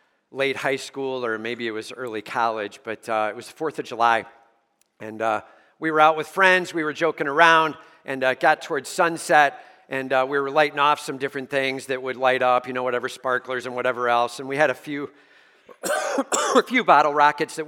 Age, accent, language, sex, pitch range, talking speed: 50-69, American, English, male, 140-195 Hz, 210 wpm